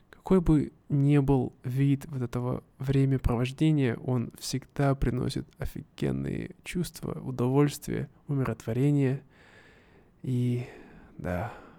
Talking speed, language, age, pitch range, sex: 85 wpm, Russian, 20-39, 120-145 Hz, male